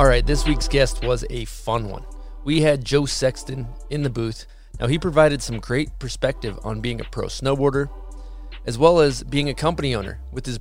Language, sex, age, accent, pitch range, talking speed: English, male, 20-39, American, 115-140 Hz, 205 wpm